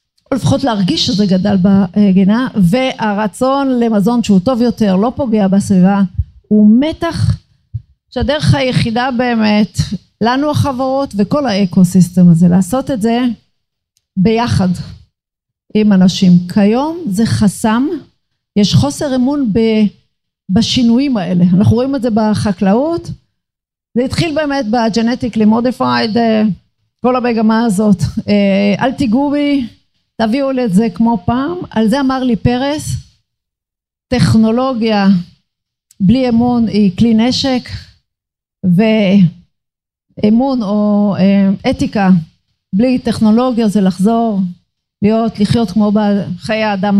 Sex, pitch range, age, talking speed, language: female, 200-245 Hz, 50-69, 105 wpm, Hebrew